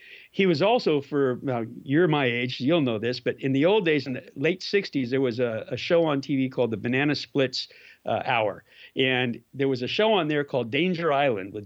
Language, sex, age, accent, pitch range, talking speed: English, male, 50-69, American, 130-170 Hz, 220 wpm